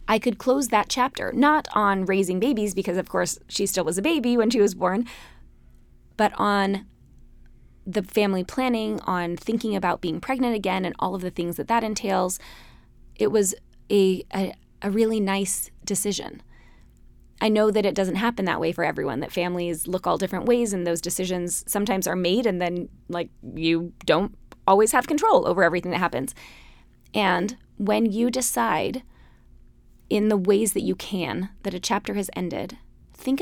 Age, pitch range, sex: 20-39, 185-220 Hz, female